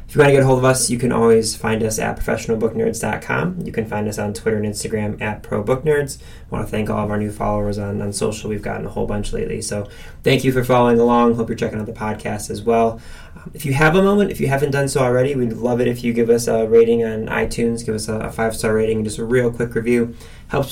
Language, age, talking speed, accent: English, 20-39, 265 wpm, American